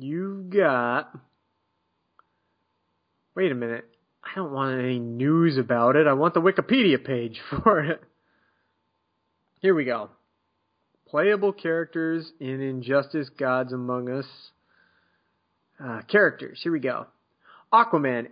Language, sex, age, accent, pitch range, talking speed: English, male, 30-49, American, 120-175 Hz, 115 wpm